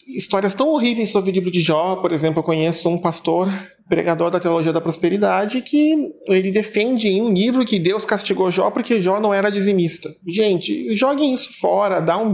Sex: male